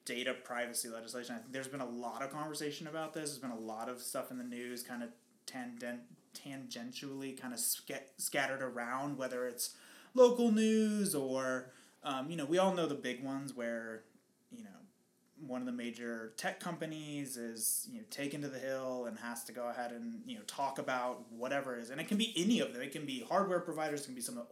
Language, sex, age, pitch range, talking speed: English, male, 20-39, 125-195 Hz, 225 wpm